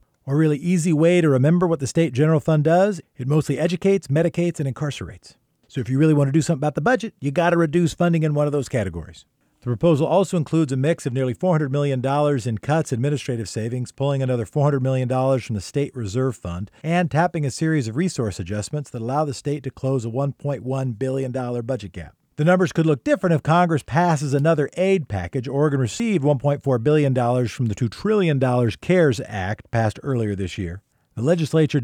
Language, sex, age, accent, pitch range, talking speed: English, male, 50-69, American, 120-160 Hz, 200 wpm